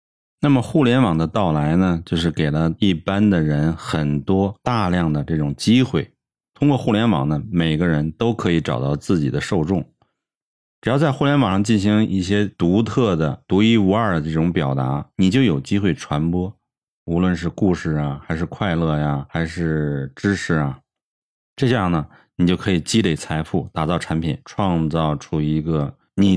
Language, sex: Chinese, male